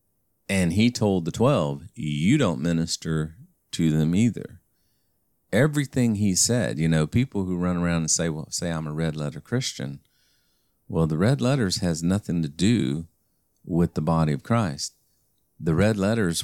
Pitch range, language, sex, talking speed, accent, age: 75-90 Hz, English, male, 165 wpm, American, 40-59